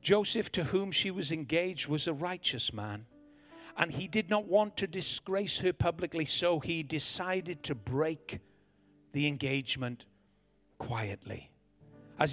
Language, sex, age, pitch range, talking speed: English, male, 40-59, 115-170 Hz, 135 wpm